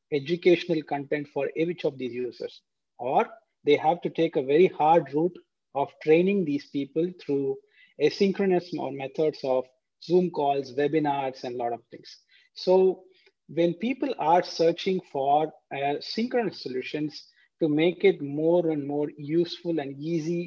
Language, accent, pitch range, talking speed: English, Indian, 145-180 Hz, 150 wpm